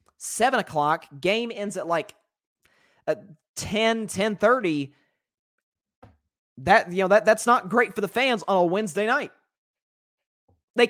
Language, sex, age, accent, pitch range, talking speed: English, male, 20-39, American, 125-190 Hz, 130 wpm